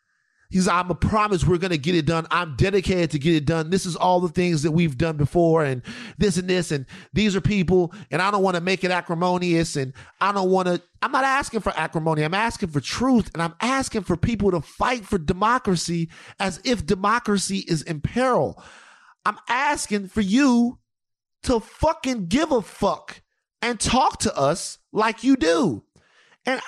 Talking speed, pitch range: 195 wpm, 170-240 Hz